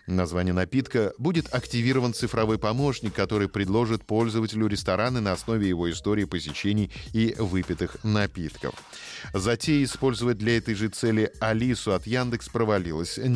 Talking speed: 125 wpm